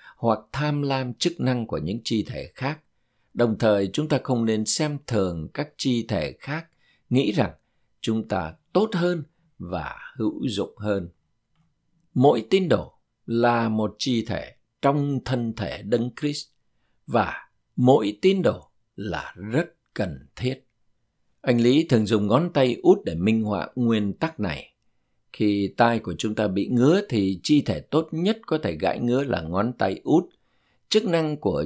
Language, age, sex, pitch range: Vietnamese, 60-79, male, 105-145 Hz